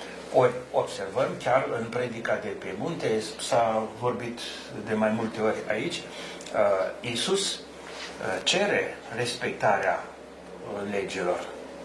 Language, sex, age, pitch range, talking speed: Romanian, male, 60-79, 115-170 Hz, 90 wpm